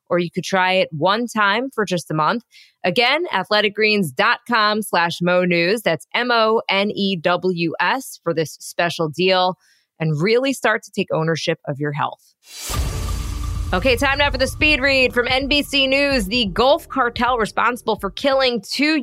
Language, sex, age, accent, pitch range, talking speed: English, female, 20-39, American, 185-240 Hz, 150 wpm